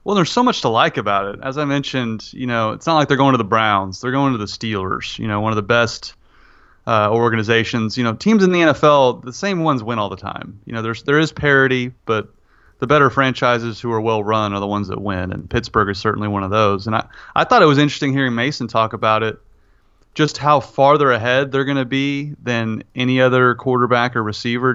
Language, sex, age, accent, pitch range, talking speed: English, male, 30-49, American, 110-135 Hz, 240 wpm